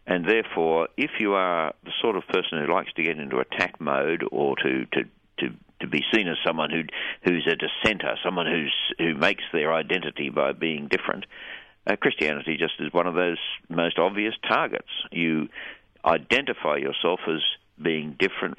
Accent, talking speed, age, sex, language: Australian, 175 wpm, 60-79, male, English